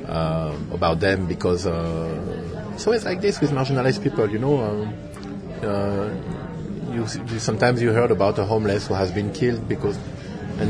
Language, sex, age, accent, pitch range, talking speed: English, male, 30-49, French, 95-115 Hz, 165 wpm